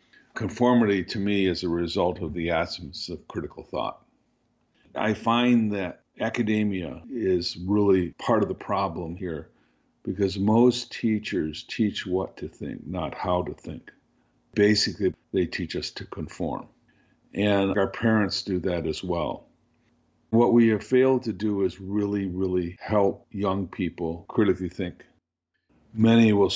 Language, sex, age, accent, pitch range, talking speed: English, male, 50-69, American, 90-110 Hz, 140 wpm